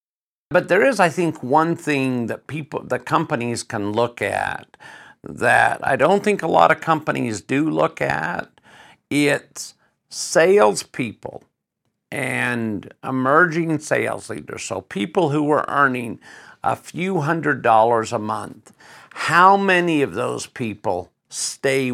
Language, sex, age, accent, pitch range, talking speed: English, male, 50-69, American, 120-160 Hz, 130 wpm